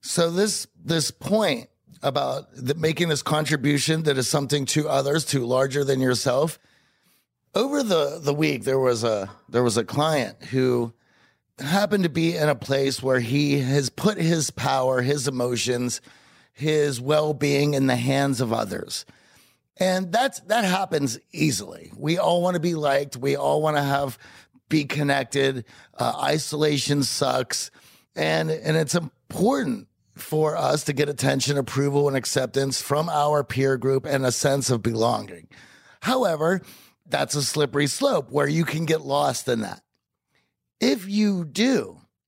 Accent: American